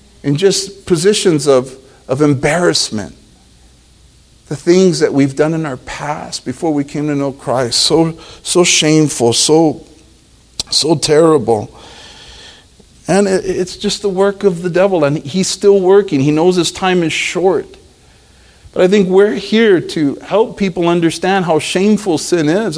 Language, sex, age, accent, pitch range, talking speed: English, male, 50-69, American, 140-195 Hz, 150 wpm